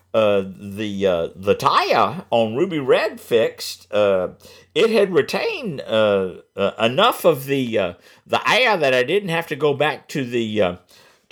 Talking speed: 165 wpm